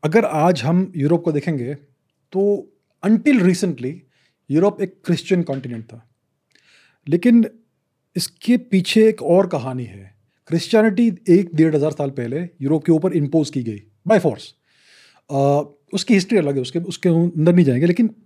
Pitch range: 140-195 Hz